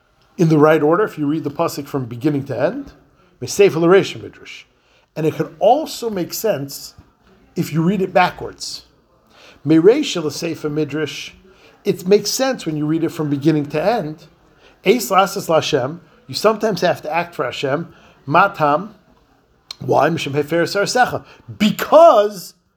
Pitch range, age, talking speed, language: 155-215 Hz, 50-69, 115 wpm, English